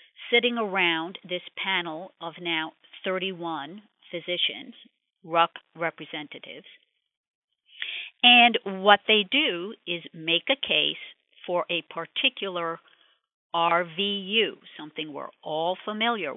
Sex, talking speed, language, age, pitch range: female, 95 wpm, English, 50-69, 165-220 Hz